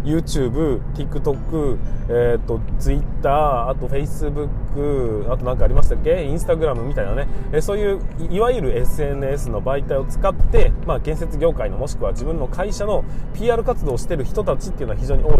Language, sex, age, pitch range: Japanese, male, 20-39, 125-170 Hz